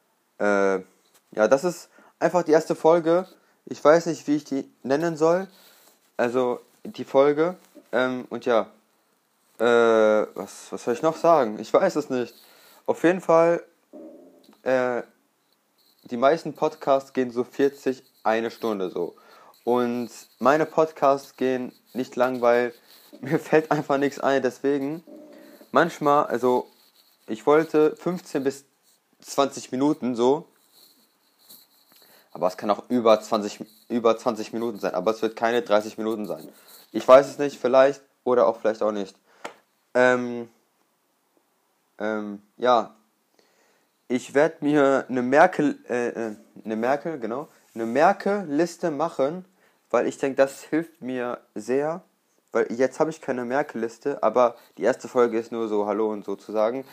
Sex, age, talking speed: male, 20-39, 145 wpm